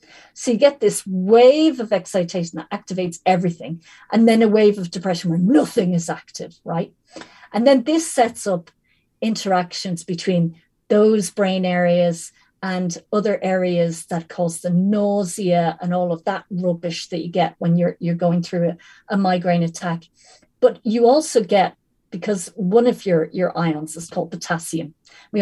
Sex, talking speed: female, 165 wpm